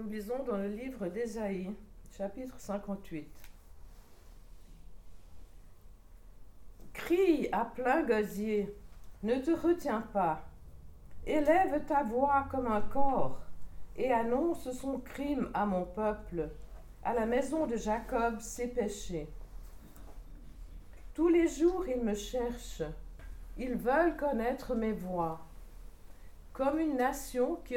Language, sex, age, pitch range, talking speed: French, female, 50-69, 170-265 Hz, 110 wpm